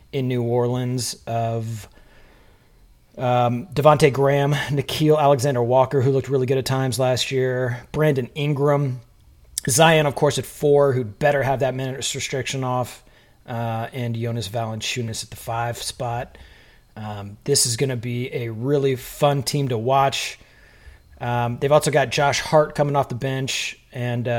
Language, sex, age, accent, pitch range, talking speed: English, male, 30-49, American, 115-140 Hz, 155 wpm